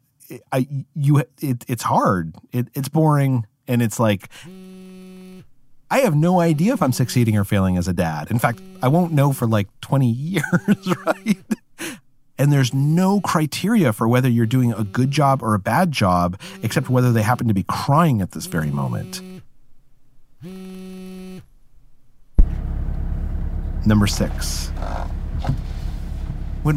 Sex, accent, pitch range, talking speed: male, American, 85-130 Hz, 140 wpm